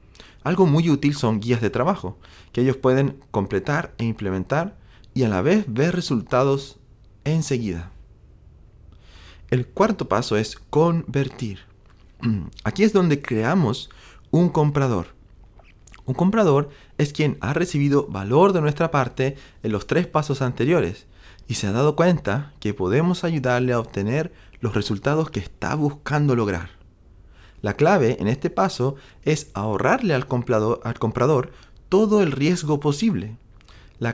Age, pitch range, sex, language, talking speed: 30-49, 100-150 Hz, male, Spanish, 135 wpm